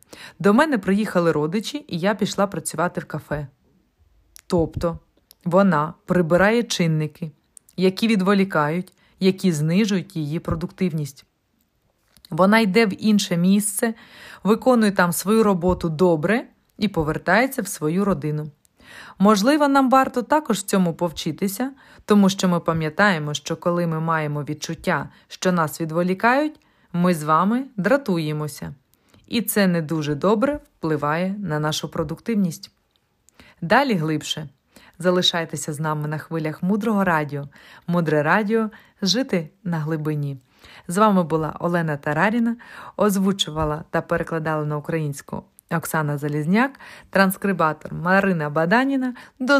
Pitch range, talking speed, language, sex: 155-210 Hz, 115 wpm, Ukrainian, female